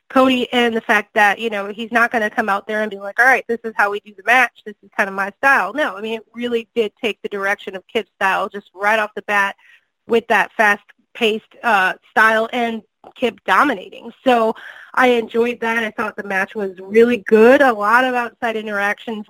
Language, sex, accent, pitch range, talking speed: English, female, American, 210-240 Hz, 225 wpm